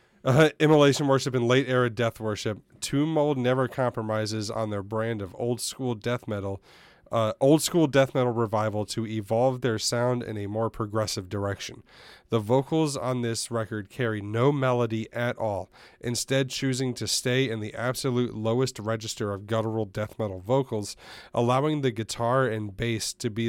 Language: English